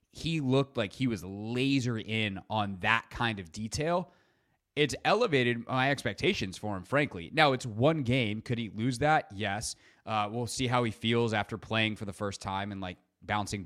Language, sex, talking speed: English, male, 190 wpm